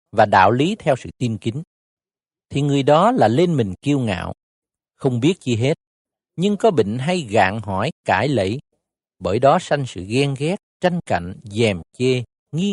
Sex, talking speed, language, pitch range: male, 180 wpm, Vietnamese, 105-155 Hz